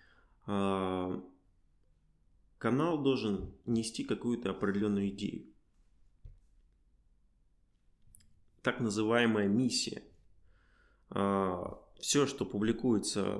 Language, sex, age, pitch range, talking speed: Russian, male, 20-39, 95-105 Hz, 55 wpm